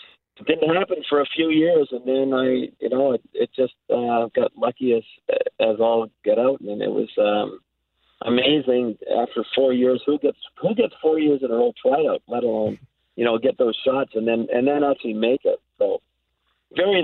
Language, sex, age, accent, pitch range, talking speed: English, male, 50-69, American, 125-155 Hz, 200 wpm